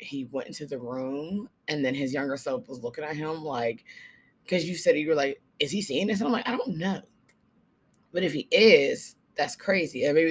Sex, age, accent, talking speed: female, 20-39, American, 220 wpm